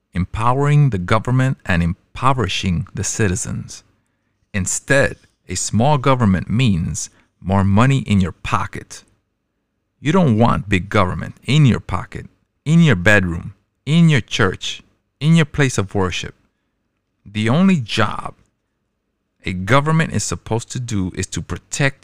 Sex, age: male, 50-69